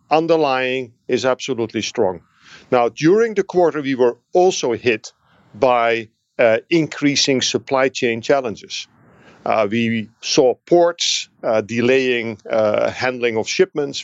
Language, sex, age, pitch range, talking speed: English, male, 50-69, 110-140 Hz, 120 wpm